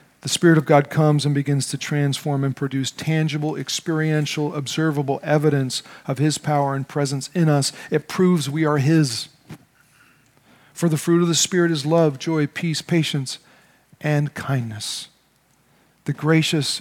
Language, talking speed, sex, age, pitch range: English, 150 wpm, male, 40-59, 135-160 Hz